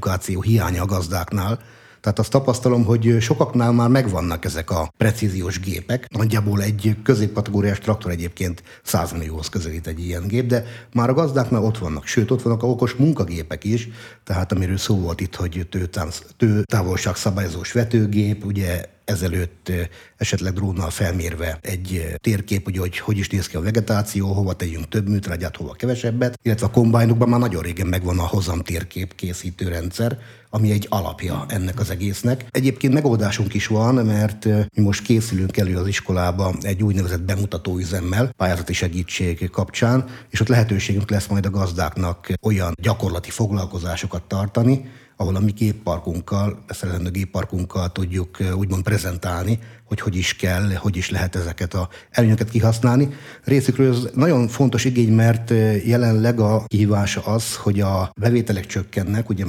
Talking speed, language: 150 wpm, Hungarian